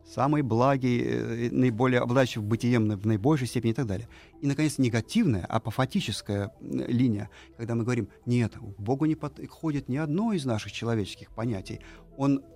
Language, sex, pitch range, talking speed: Russian, male, 105-140 Hz, 145 wpm